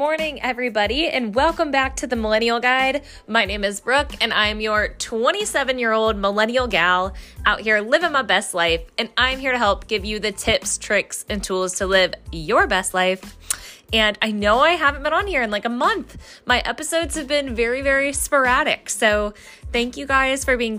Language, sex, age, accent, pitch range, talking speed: English, female, 20-39, American, 200-255 Hz, 200 wpm